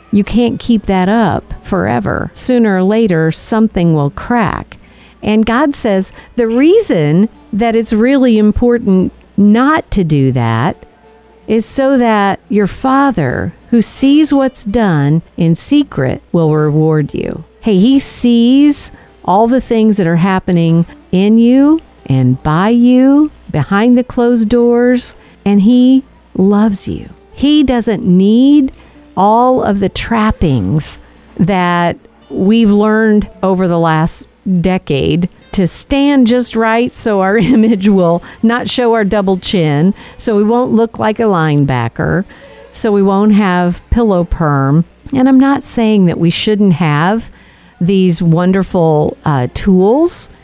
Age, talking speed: 50-69, 135 wpm